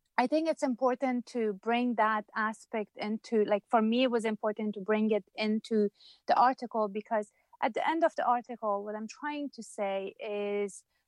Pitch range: 205-235 Hz